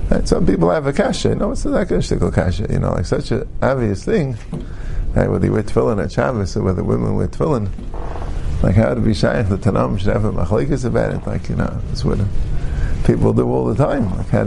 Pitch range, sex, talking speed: 100-125 Hz, male, 230 wpm